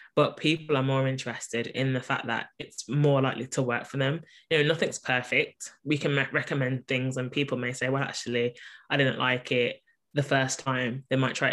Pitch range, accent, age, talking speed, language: 130-140 Hz, British, 10-29, 210 wpm, English